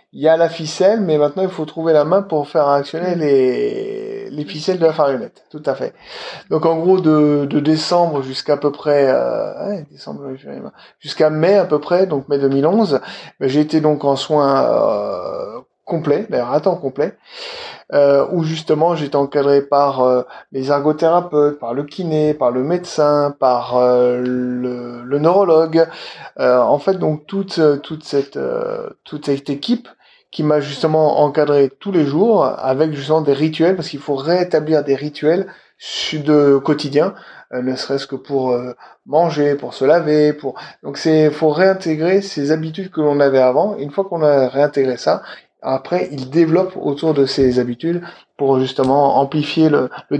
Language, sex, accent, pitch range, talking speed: French, male, French, 140-165 Hz, 170 wpm